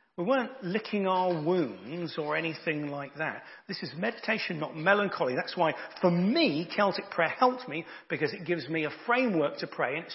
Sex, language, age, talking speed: male, English, 40-59, 190 wpm